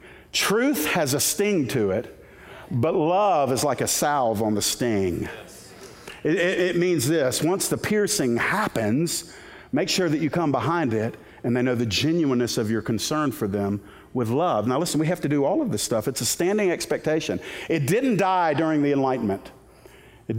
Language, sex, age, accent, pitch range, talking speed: English, male, 50-69, American, 115-160 Hz, 190 wpm